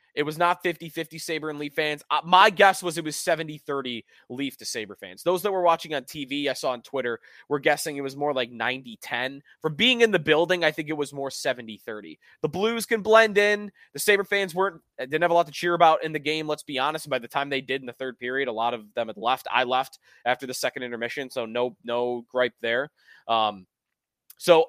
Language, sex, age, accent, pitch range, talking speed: English, male, 20-39, American, 125-170 Hz, 235 wpm